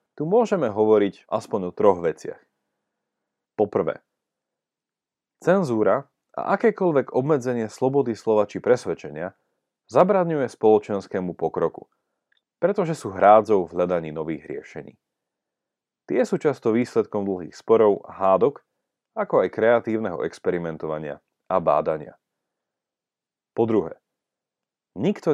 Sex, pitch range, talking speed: male, 95-130 Hz, 95 wpm